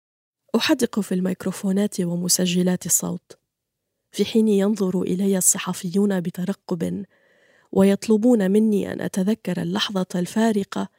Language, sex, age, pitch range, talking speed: Arabic, female, 20-39, 185-225 Hz, 95 wpm